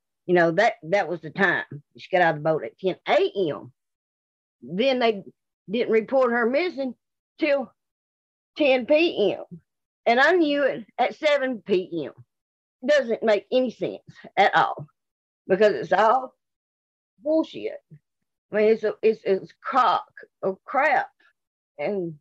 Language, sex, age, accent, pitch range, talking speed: English, female, 50-69, American, 195-290 Hz, 140 wpm